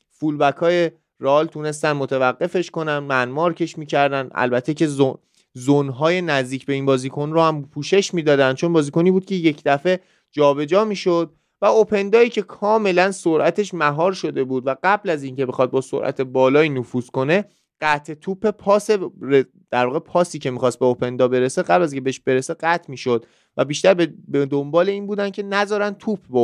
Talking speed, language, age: 175 wpm, Persian, 30-49